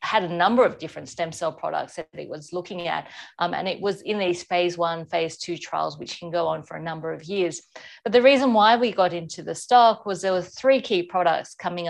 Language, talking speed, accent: English, 245 wpm, Australian